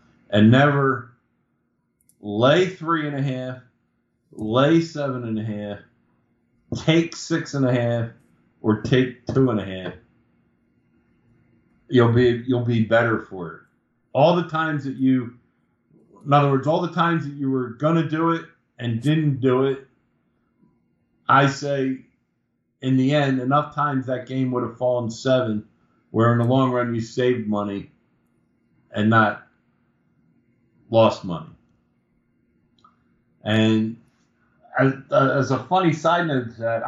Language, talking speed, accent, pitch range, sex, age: English, 135 wpm, American, 110-140 Hz, male, 50-69